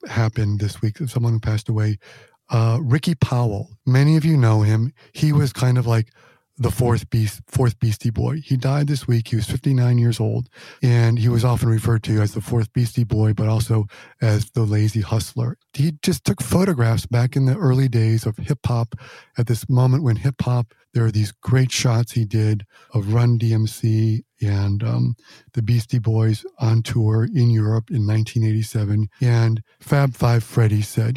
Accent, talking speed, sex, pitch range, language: American, 180 wpm, male, 110-125 Hz, English